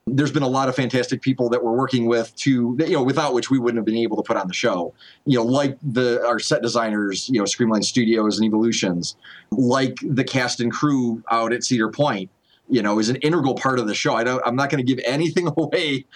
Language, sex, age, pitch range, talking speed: English, male, 30-49, 115-140 Hz, 245 wpm